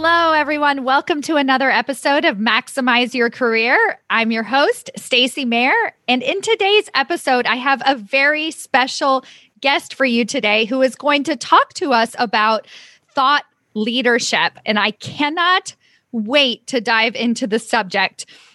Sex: female